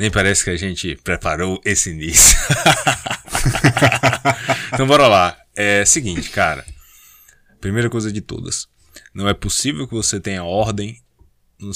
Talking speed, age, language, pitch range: 140 wpm, 20-39, Portuguese, 80-110 Hz